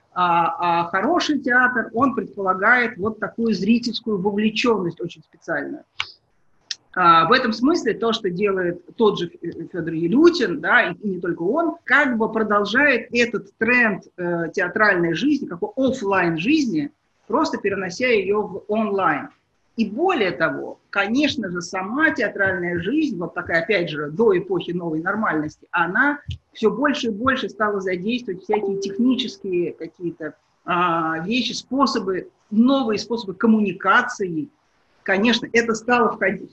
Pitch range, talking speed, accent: 190-245 Hz, 125 wpm, native